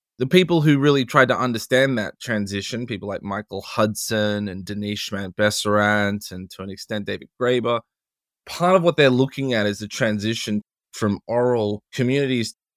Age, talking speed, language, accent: 20-39, 160 wpm, English, Australian